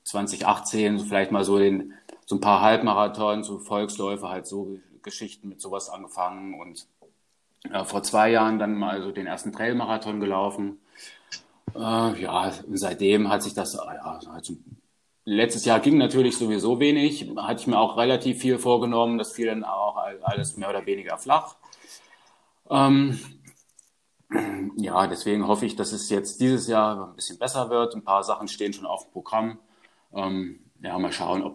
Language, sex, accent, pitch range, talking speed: German, male, German, 100-120 Hz, 160 wpm